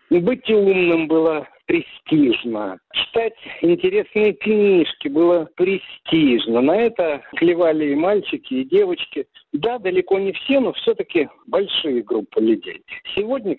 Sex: male